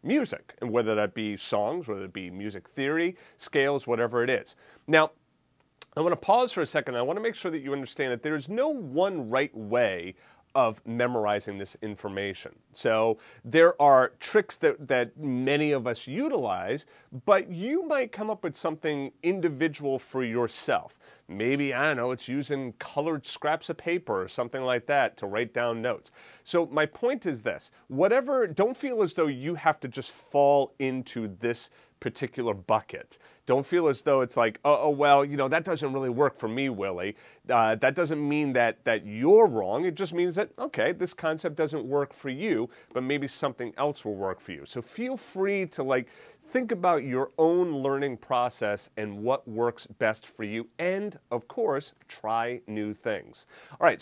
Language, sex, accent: English, male, American